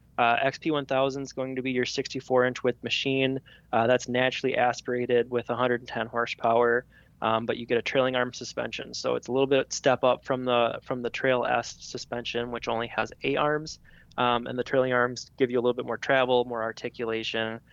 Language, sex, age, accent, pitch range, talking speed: English, male, 20-39, American, 115-130 Hz, 195 wpm